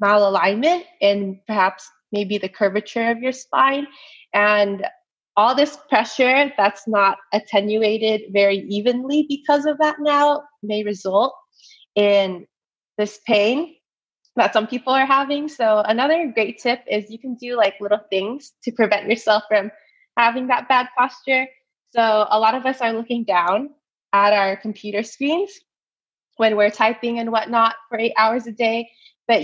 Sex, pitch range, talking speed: female, 205-265 Hz, 150 wpm